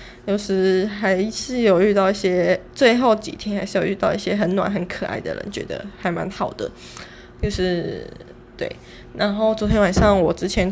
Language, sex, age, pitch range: Chinese, female, 10-29, 195-235 Hz